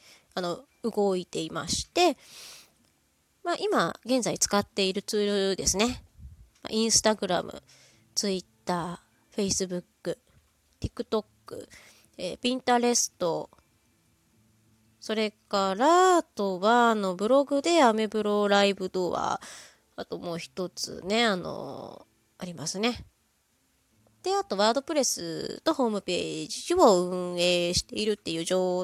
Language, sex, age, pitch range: Japanese, female, 20-39, 180-260 Hz